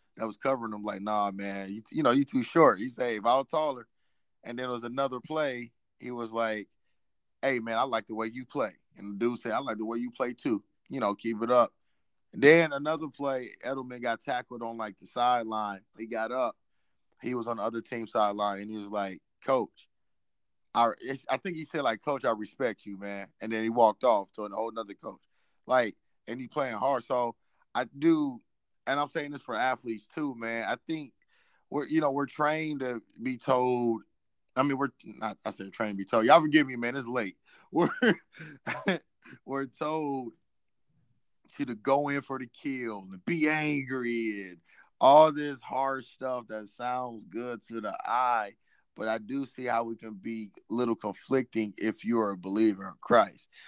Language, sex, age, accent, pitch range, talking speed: English, male, 30-49, American, 110-135 Hz, 205 wpm